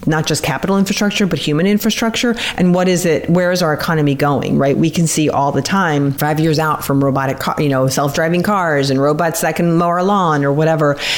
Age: 40-59